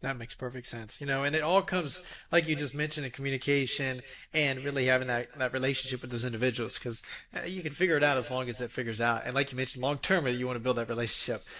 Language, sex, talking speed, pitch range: English, male, 255 wpm, 130-160 Hz